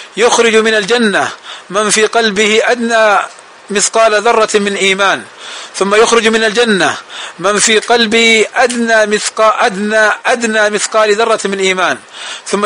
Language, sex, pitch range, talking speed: Arabic, male, 205-230 Hz, 130 wpm